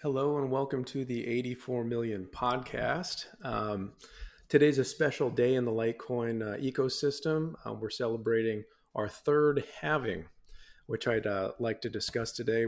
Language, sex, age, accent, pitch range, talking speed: English, male, 40-59, American, 115-140 Hz, 145 wpm